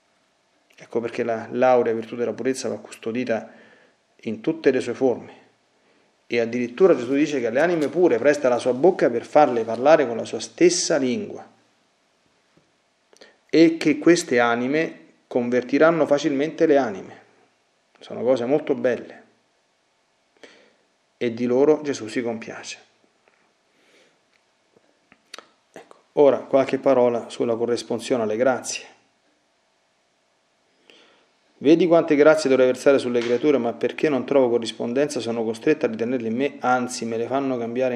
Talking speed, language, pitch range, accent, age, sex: 130 wpm, Italian, 115-140 Hz, native, 40-59, male